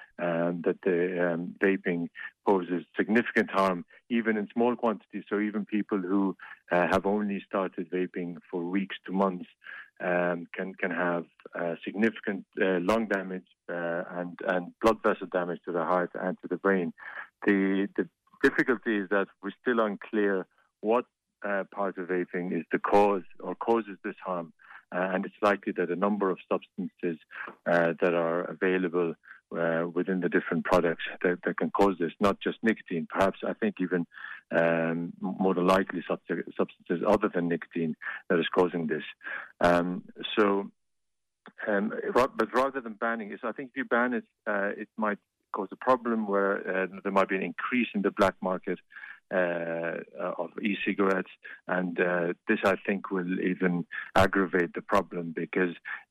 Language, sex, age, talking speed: English, male, 50-69, 165 wpm